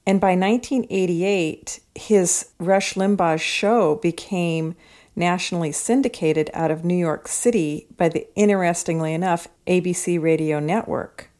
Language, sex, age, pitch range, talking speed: English, female, 40-59, 160-200 Hz, 115 wpm